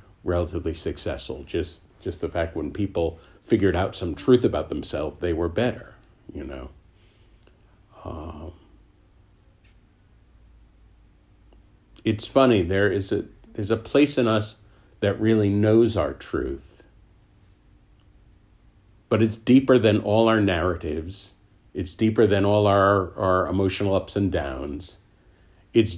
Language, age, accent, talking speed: English, 50-69, American, 120 wpm